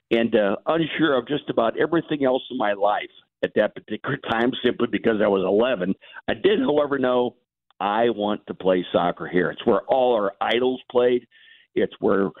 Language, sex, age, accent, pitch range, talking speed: English, male, 50-69, American, 110-130 Hz, 185 wpm